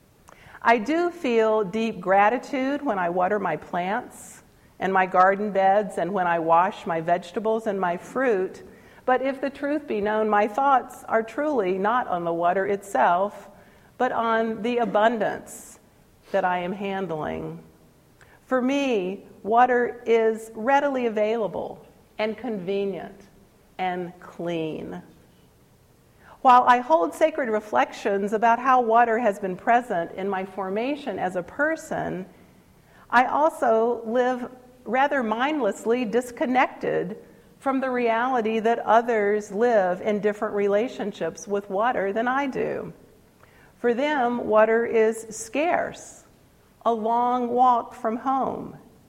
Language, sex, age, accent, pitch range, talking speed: English, female, 50-69, American, 200-255 Hz, 125 wpm